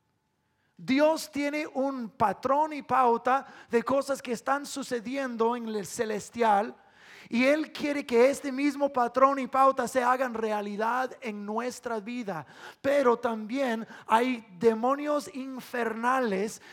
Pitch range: 220-270 Hz